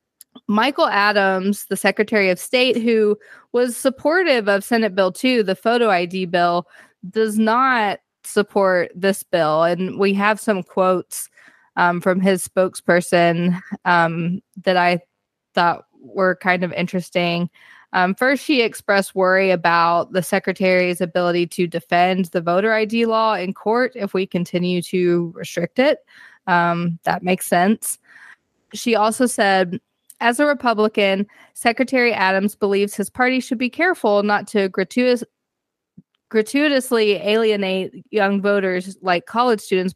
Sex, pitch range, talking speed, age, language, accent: female, 180-220 Hz, 135 wpm, 20-39, English, American